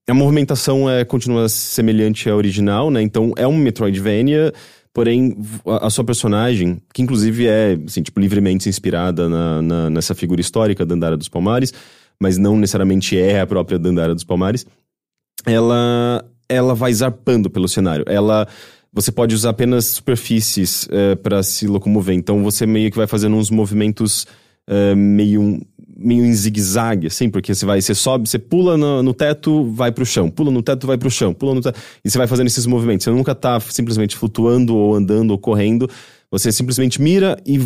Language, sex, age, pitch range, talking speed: English, male, 20-39, 100-130 Hz, 180 wpm